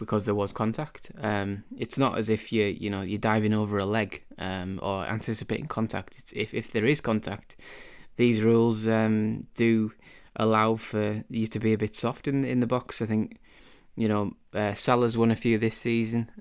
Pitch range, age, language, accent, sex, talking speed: 105-115 Hz, 20-39, English, British, male, 200 wpm